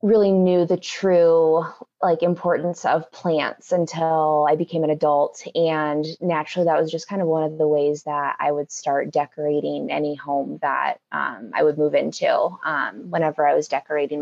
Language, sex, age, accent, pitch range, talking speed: English, female, 20-39, American, 150-175 Hz, 175 wpm